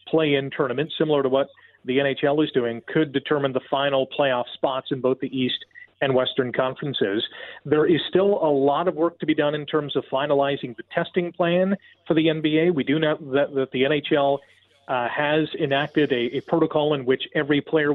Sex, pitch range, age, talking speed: male, 135-165 Hz, 40-59, 195 wpm